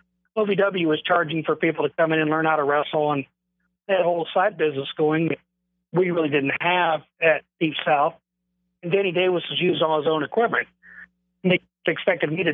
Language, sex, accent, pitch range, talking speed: English, male, American, 150-175 Hz, 195 wpm